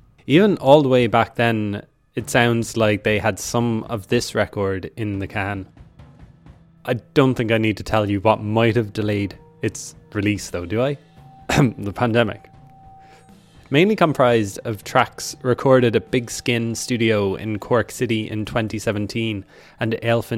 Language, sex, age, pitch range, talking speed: English, male, 20-39, 105-120 Hz, 150 wpm